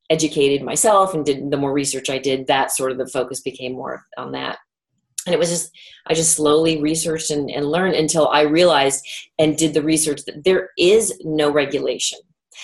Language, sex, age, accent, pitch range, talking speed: English, female, 30-49, American, 145-170 Hz, 195 wpm